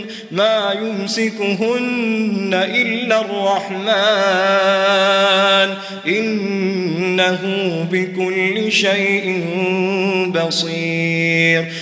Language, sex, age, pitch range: Arabic, male, 20-39, 220-260 Hz